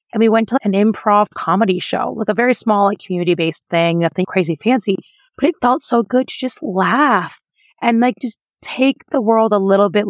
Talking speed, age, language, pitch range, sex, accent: 210 wpm, 30-49, English, 170-215 Hz, female, American